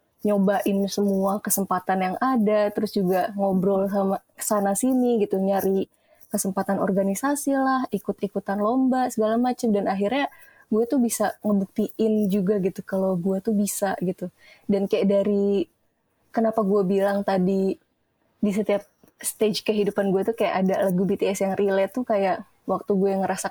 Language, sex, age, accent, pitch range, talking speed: Indonesian, female, 20-39, native, 195-225 Hz, 145 wpm